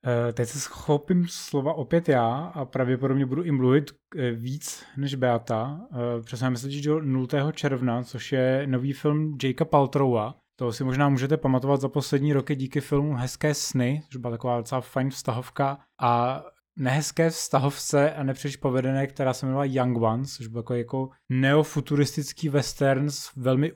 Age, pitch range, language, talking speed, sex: 20-39, 125-140 Hz, Czech, 155 wpm, male